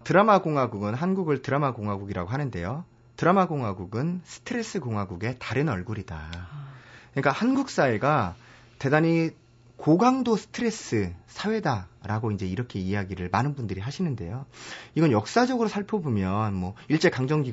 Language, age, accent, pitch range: Korean, 30-49, native, 115-190 Hz